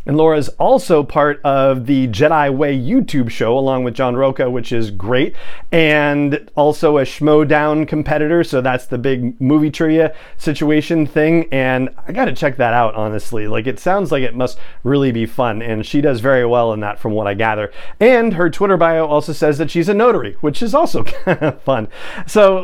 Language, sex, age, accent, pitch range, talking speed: English, male, 40-59, American, 125-160 Hz, 195 wpm